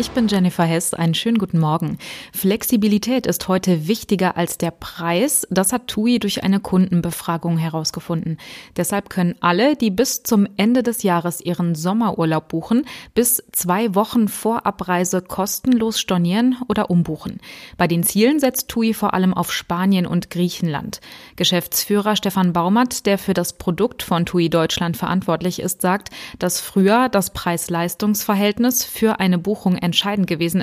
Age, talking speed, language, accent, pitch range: 20-39, 150 wpm, German, German, 175-220 Hz